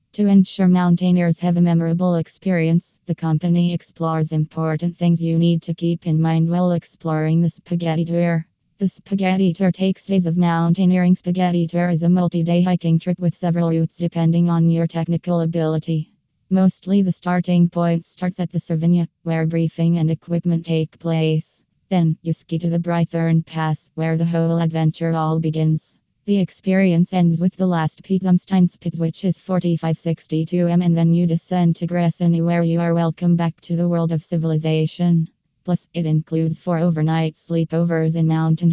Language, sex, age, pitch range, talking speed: Italian, female, 20-39, 160-175 Hz, 165 wpm